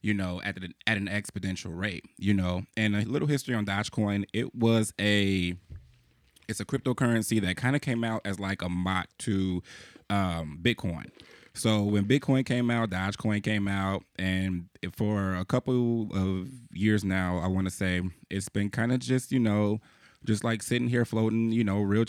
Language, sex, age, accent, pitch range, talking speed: English, male, 20-39, American, 95-110 Hz, 180 wpm